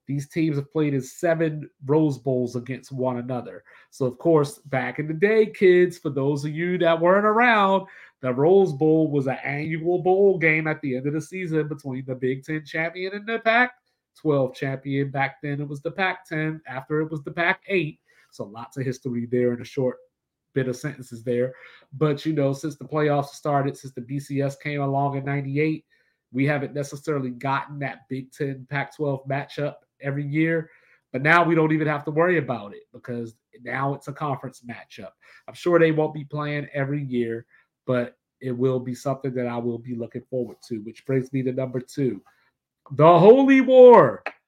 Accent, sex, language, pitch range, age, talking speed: American, male, English, 130-160 Hz, 30-49, 190 wpm